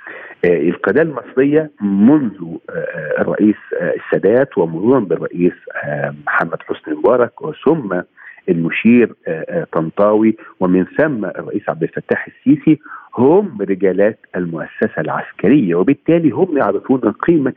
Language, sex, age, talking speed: Arabic, male, 50-69, 90 wpm